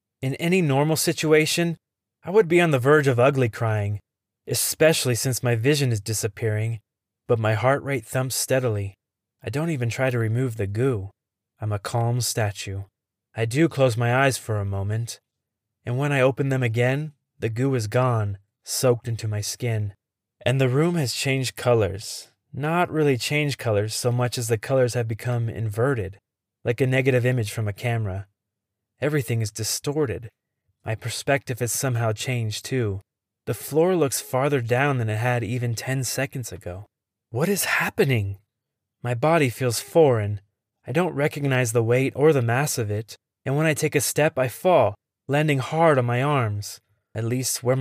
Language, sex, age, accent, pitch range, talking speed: English, male, 20-39, American, 110-140 Hz, 175 wpm